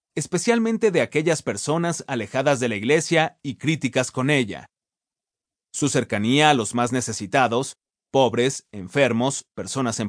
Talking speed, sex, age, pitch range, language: 130 wpm, male, 30-49, 120-155 Hz, Spanish